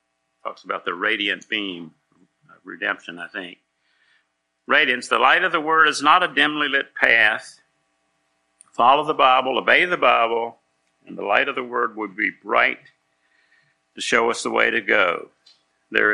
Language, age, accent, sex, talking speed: English, 60-79, American, male, 165 wpm